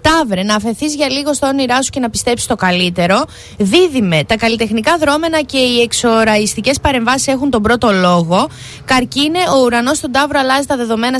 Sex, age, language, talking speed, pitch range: female, 20-39, Greek, 175 wpm, 210-280 Hz